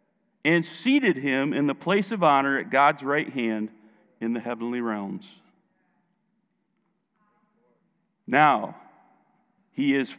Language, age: English, 50-69